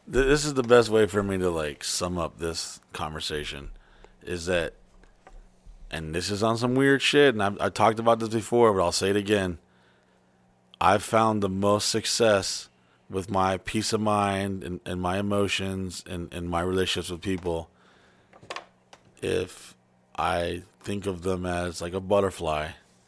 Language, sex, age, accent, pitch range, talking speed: English, male, 30-49, American, 85-105 Hz, 160 wpm